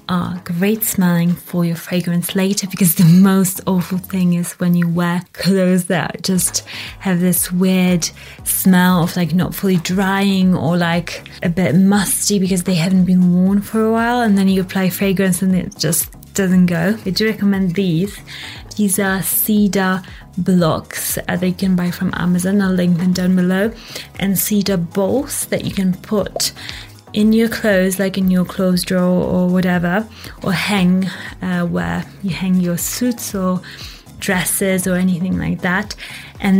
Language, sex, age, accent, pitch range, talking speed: English, female, 20-39, British, 180-195 Hz, 165 wpm